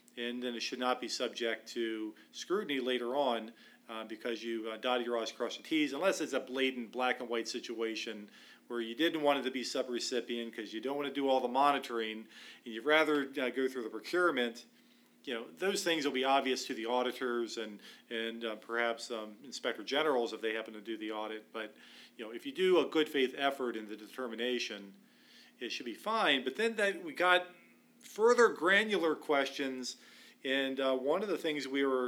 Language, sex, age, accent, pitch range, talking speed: English, male, 40-59, American, 115-150 Hz, 200 wpm